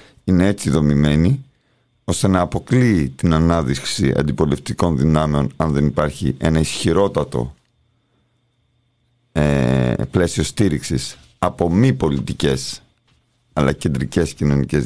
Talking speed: 95 wpm